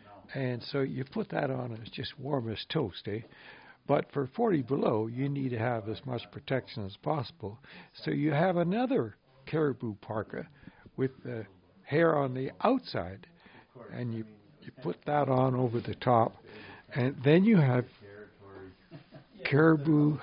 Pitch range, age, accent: 110-155 Hz, 60-79, American